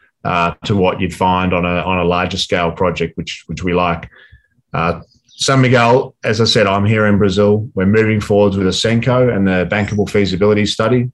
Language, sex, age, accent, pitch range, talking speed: English, male, 30-49, Australian, 95-110 Hz, 200 wpm